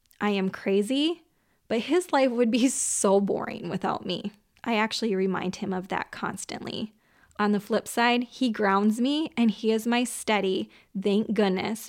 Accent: American